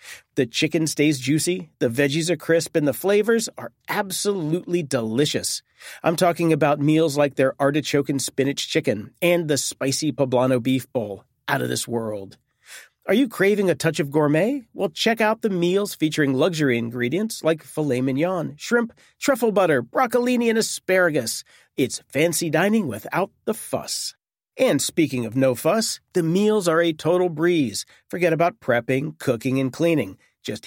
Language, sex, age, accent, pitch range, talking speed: English, male, 40-59, American, 140-195 Hz, 160 wpm